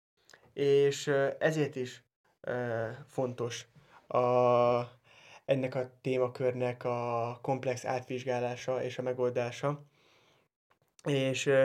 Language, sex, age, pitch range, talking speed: Hungarian, male, 20-39, 125-140 Hz, 80 wpm